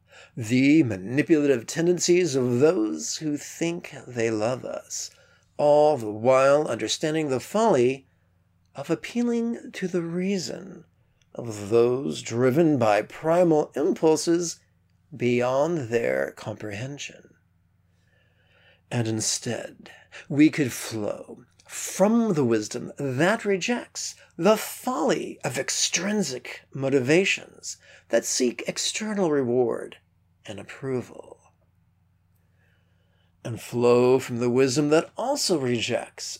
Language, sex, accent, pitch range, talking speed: English, male, American, 110-165 Hz, 95 wpm